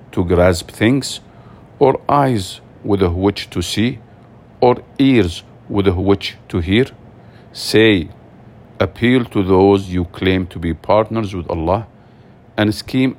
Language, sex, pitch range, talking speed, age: English, male, 95-115 Hz, 125 wpm, 50-69